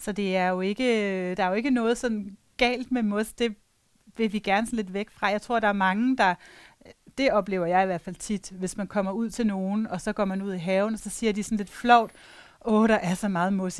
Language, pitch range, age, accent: Danish, 190-230 Hz, 30-49, native